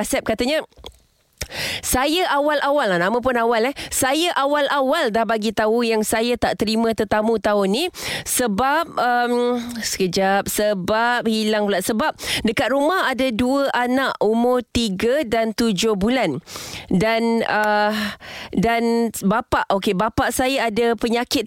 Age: 20-39